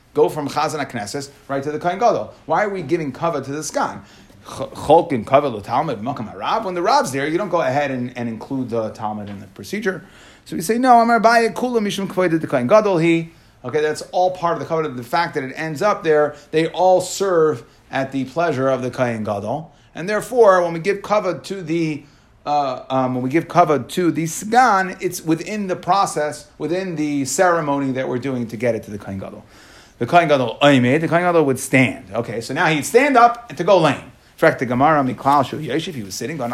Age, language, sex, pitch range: 30-49, English, male, 130-180 Hz